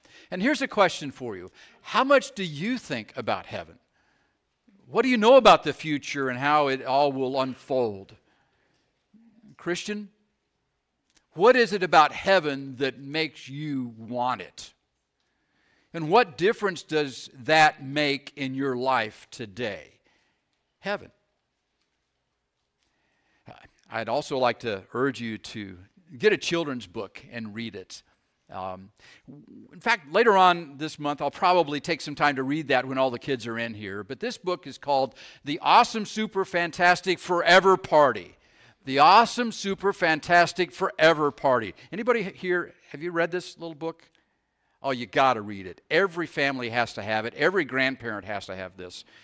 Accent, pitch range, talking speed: American, 120-180 Hz, 155 wpm